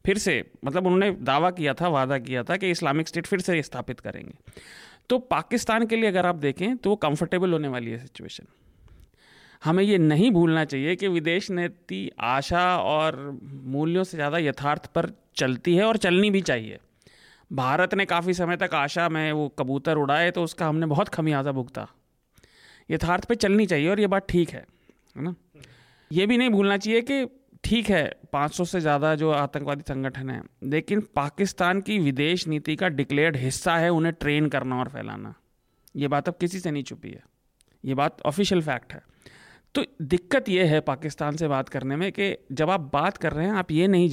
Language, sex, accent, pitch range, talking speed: Hindi, male, native, 145-190 Hz, 190 wpm